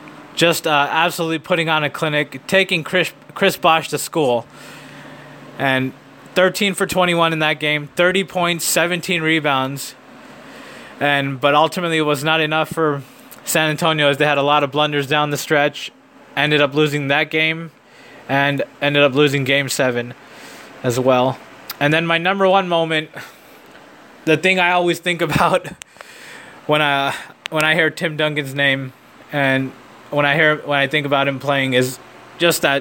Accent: American